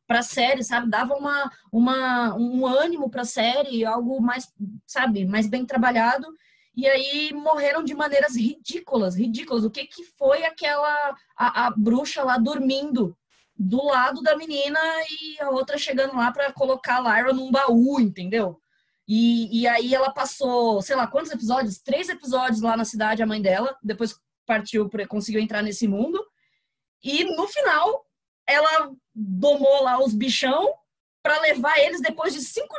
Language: Portuguese